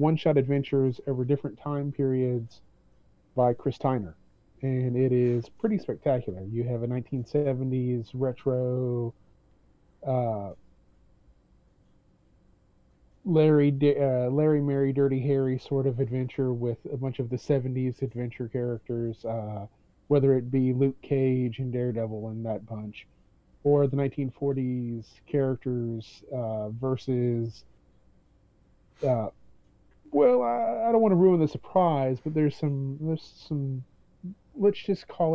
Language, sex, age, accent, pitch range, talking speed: English, male, 30-49, American, 120-145 Hz, 120 wpm